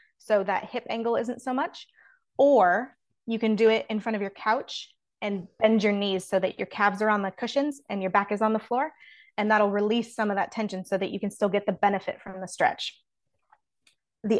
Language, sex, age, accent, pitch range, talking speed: English, female, 20-39, American, 195-225 Hz, 230 wpm